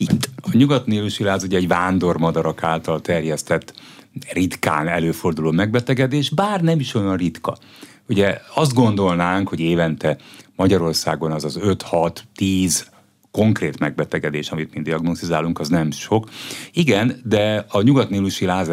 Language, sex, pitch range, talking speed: Hungarian, male, 85-115 Hz, 125 wpm